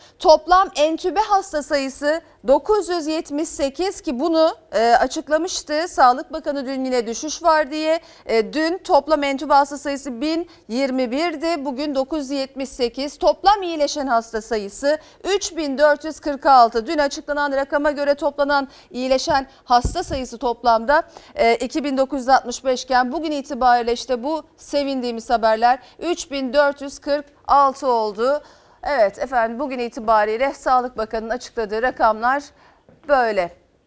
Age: 40-59